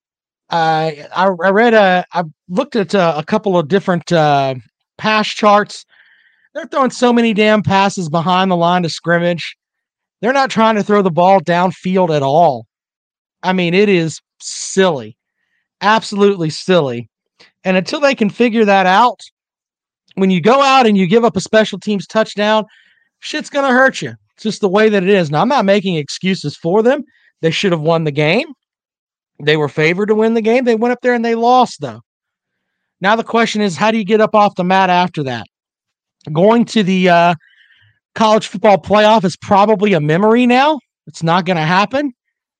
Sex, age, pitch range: male, 40-59, 170-225 Hz